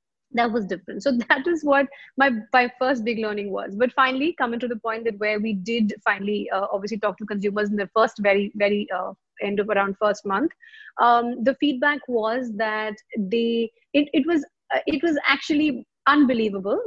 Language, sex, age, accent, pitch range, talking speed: English, female, 30-49, Indian, 215-265 Hz, 190 wpm